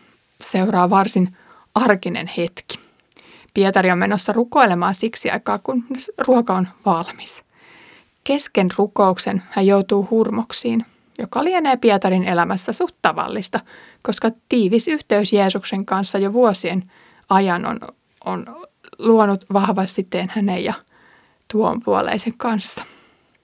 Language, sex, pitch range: Finnish, female, 190-230 Hz